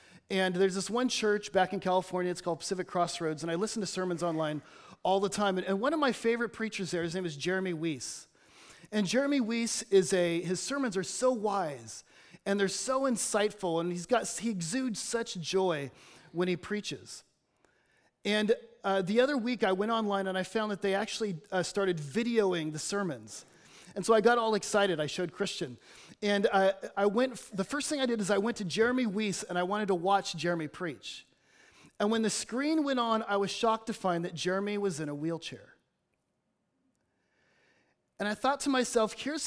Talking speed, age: 200 wpm, 30-49